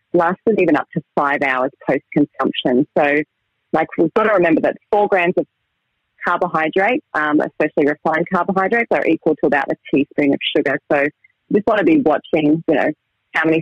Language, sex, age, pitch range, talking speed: English, female, 30-49, 140-175 Hz, 185 wpm